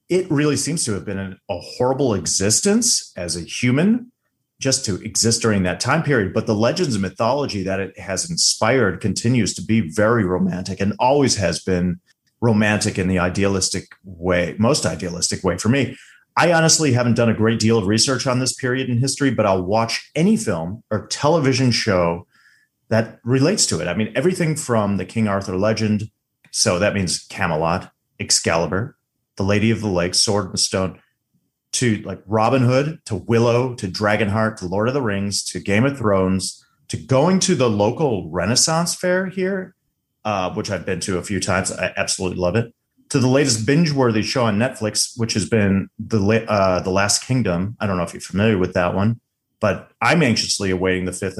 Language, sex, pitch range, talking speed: English, male, 95-130 Hz, 185 wpm